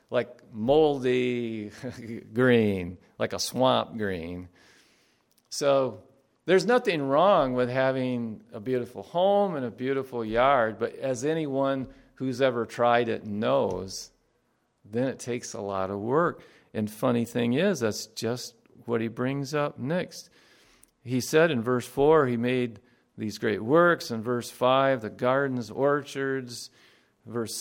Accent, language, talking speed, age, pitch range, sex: American, English, 135 wpm, 50-69, 120-155 Hz, male